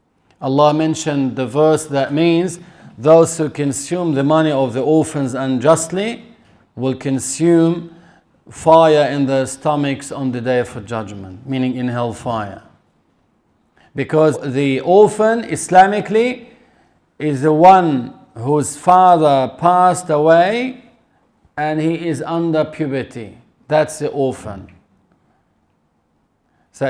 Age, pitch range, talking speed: 50-69, 140-180 Hz, 110 wpm